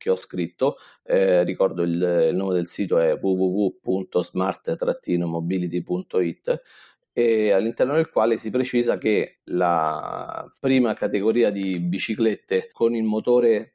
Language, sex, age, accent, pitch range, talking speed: Italian, male, 40-59, native, 95-130 Hz, 120 wpm